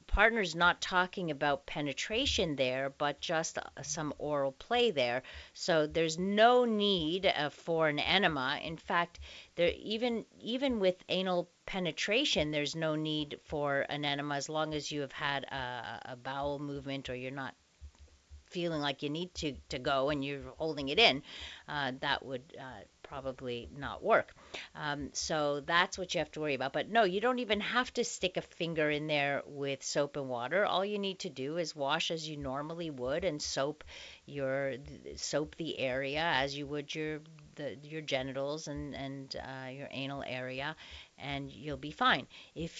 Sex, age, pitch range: female, 40-59, 140-175 Hz